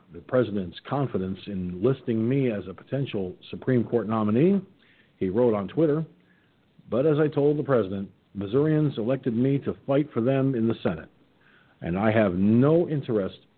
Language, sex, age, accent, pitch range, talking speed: English, male, 50-69, American, 110-140 Hz, 165 wpm